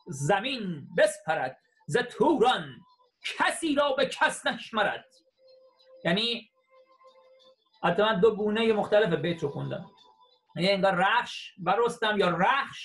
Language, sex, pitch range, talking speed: Persian, male, 180-270 Hz, 110 wpm